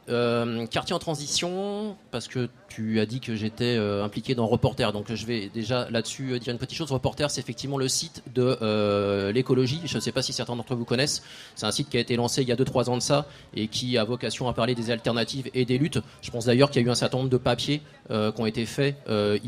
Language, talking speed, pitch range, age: French, 260 wpm, 115-140 Hz, 30-49